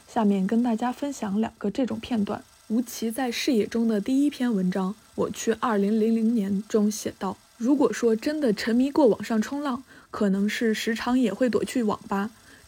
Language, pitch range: Chinese, 210-255 Hz